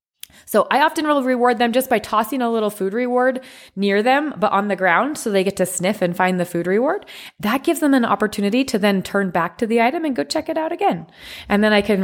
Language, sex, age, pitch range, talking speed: English, female, 20-39, 175-235 Hz, 255 wpm